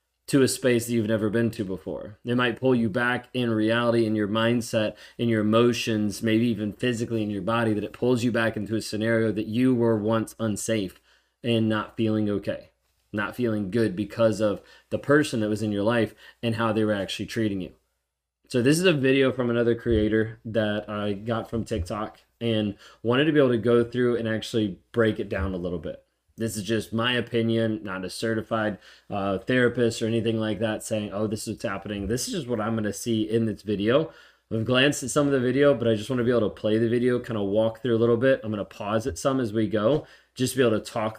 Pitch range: 110-125 Hz